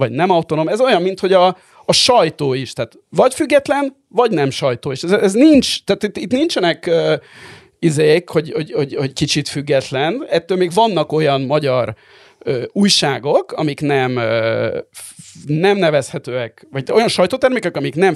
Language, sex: Hungarian, male